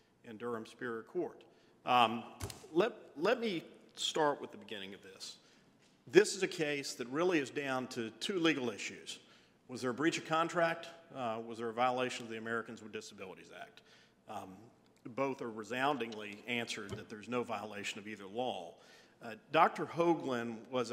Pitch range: 115-150 Hz